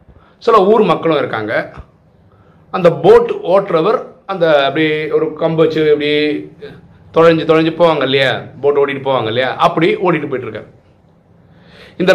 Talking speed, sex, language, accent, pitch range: 120 wpm, male, Tamil, native, 155-200 Hz